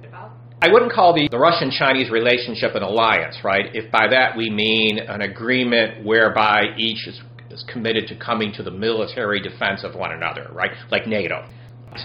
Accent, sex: American, male